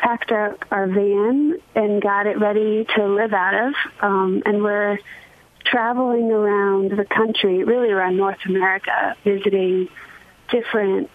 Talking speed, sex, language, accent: 135 wpm, female, English, American